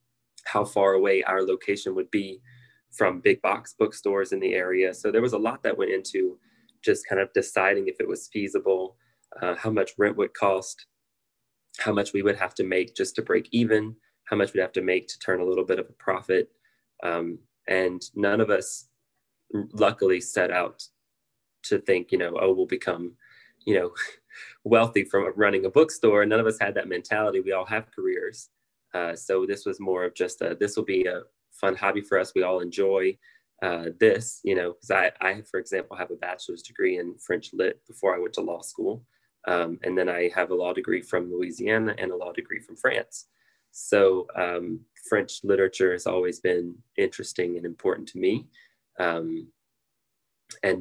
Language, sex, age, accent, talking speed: English, male, 20-39, American, 195 wpm